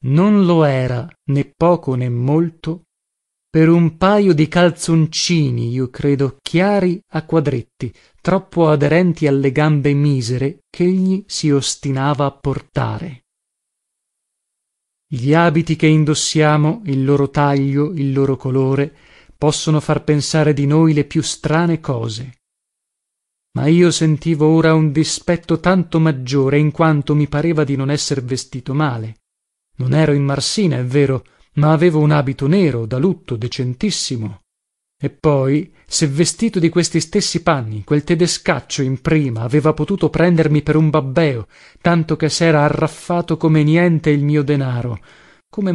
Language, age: Italian, 30-49